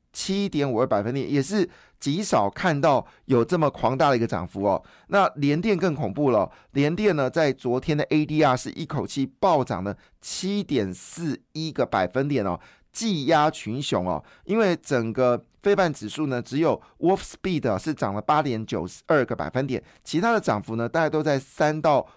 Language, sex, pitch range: Chinese, male, 120-160 Hz